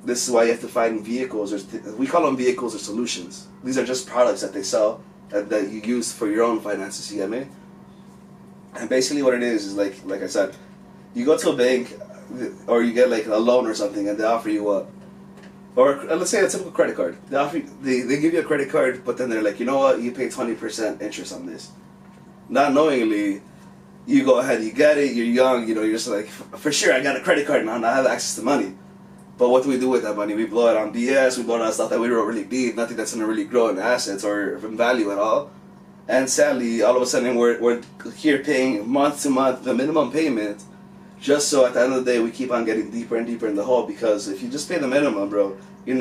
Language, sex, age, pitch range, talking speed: English, male, 20-39, 110-135 Hz, 260 wpm